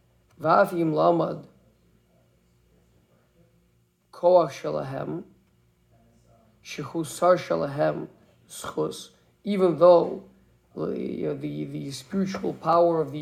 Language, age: English, 50-69